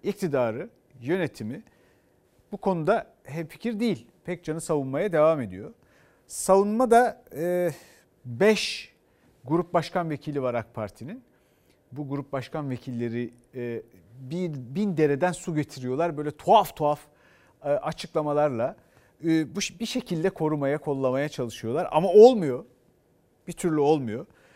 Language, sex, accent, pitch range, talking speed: Turkish, male, native, 130-185 Hz, 115 wpm